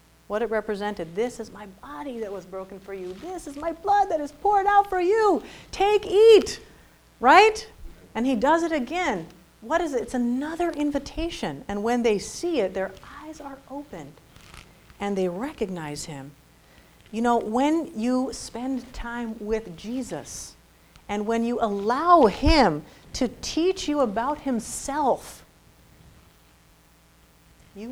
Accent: American